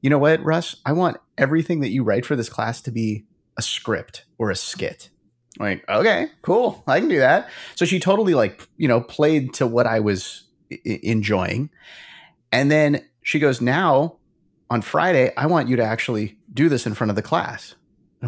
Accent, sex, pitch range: American, male, 110-145 Hz